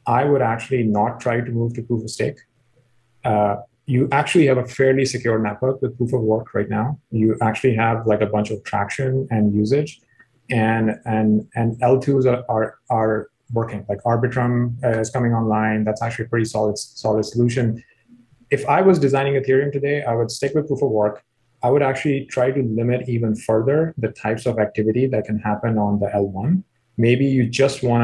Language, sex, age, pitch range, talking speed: English, male, 30-49, 110-130 Hz, 195 wpm